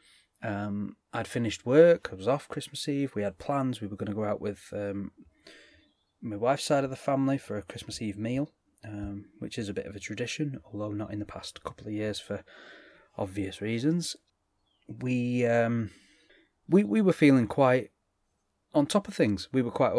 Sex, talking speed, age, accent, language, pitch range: male, 190 wpm, 30-49, British, English, 105-135 Hz